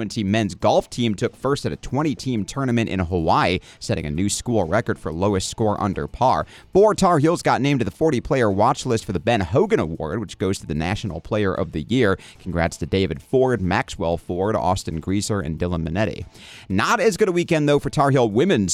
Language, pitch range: English, 95-130 Hz